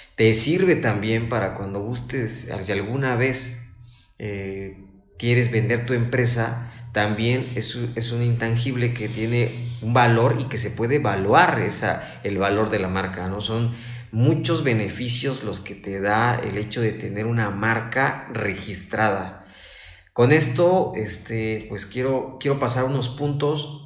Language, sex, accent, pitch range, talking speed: Spanish, male, Mexican, 110-140 Hz, 145 wpm